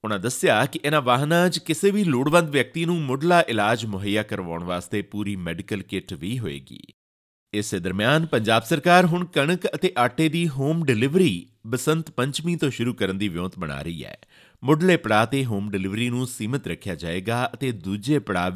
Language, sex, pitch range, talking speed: Punjabi, male, 100-145 Hz, 180 wpm